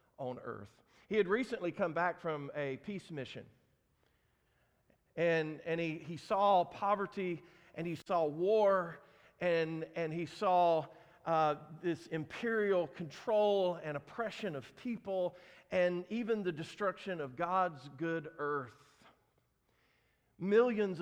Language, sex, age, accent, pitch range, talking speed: English, male, 50-69, American, 140-180 Hz, 120 wpm